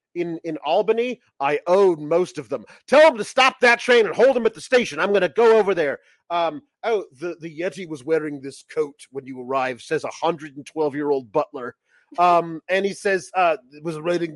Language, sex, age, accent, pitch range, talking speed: English, male, 40-59, American, 165-260 Hz, 205 wpm